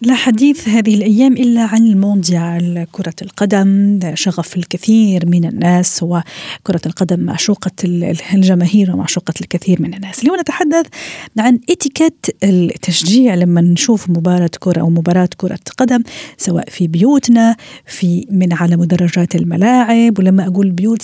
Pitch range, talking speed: 175-220 Hz, 130 wpm